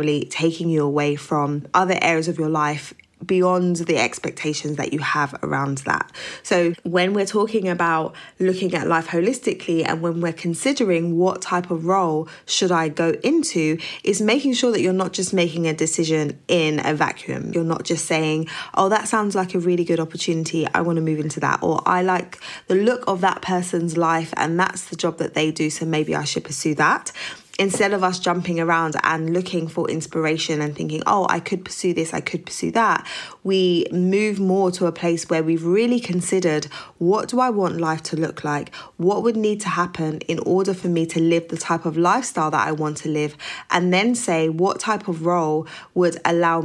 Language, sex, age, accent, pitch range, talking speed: English, female, 20-39, British, 160-185 Hz, 205 wpm